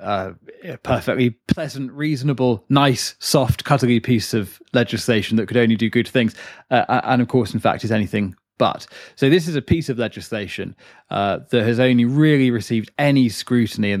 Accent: British